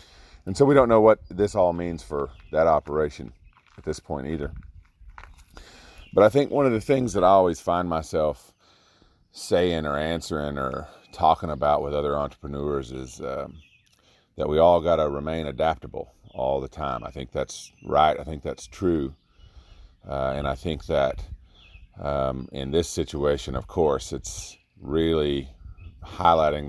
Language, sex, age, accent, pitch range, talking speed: English, male, 40-59, American, 70-85 Hz, 160 wpm